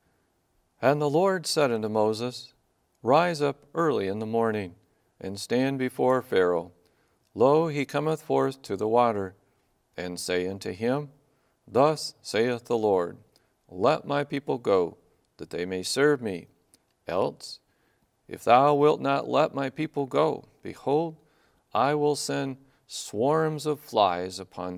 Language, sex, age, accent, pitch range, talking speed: English, male, 40-59, American, 95-135 Hz, 140 wpm